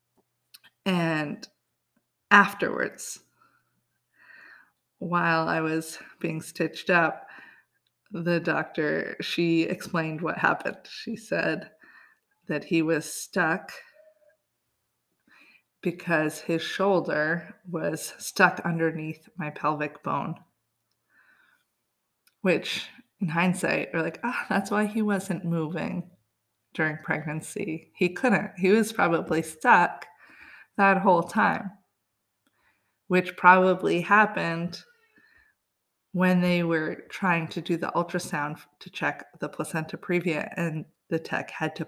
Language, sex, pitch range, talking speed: English, female, 160-185 Hz, 105 wpm